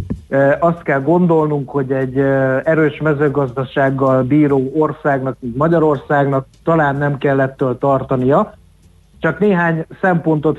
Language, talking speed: Hungarian, 100 wpm